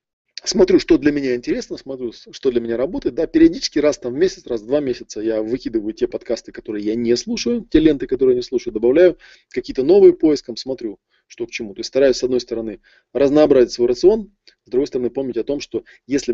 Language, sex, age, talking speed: Russian, male, 20-39, 215 wpm